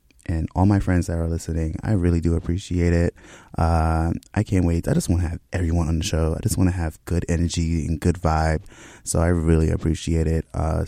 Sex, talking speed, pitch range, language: male, 225 wpm, 85-110 Hz, English